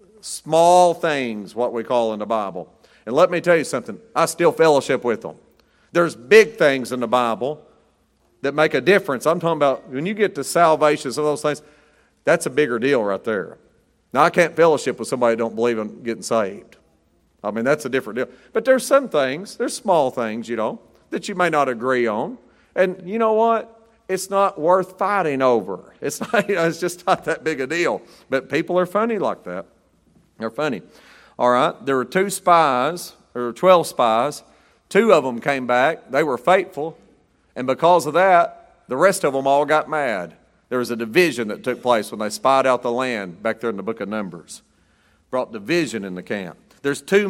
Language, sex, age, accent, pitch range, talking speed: English, male, 40-59, American, 120-180 Hz, 205 wpm